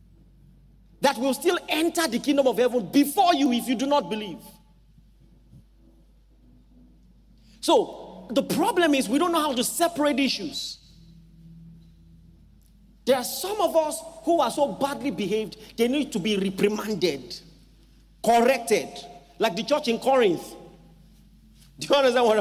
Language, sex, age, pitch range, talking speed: English, male, 40-59, 185-280 Hz, 135 wpm